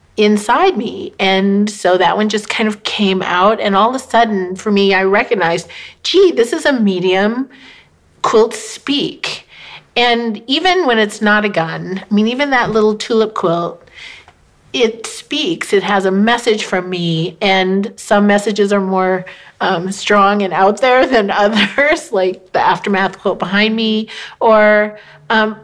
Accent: American